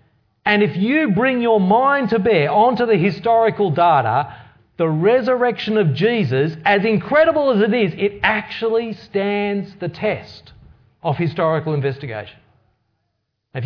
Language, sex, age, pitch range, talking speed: English, male, 40-59, 125-210 Hz, 130 wpm